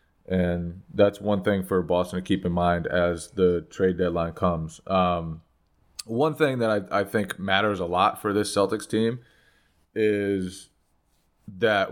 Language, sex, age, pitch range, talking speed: English, male, 20-39, 90-105 Hz, 155 wpm